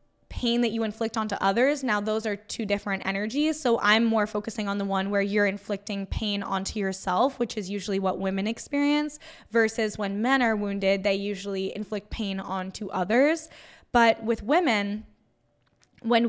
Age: 10-29